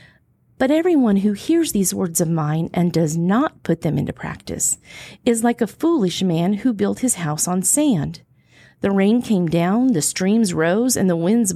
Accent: American